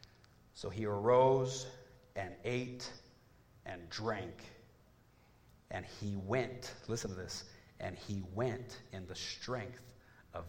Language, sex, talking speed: English, male, 115 wpm